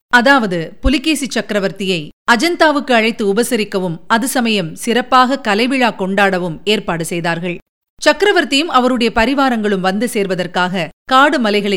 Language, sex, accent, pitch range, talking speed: Tamil, female, native, 190-250 Hz, 95 wpm